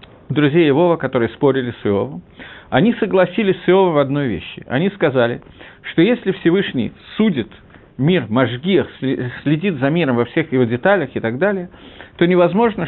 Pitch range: 130-180 Hz